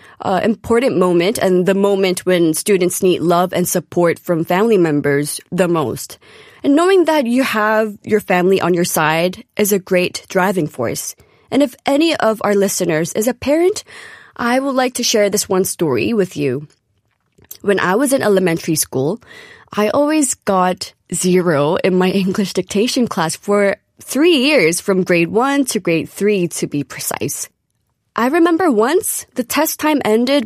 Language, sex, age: Korean, female, 20-39